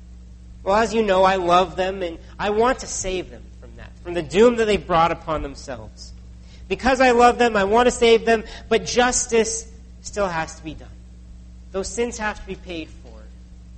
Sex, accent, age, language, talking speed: male, American, 40-59, English, 200 wpm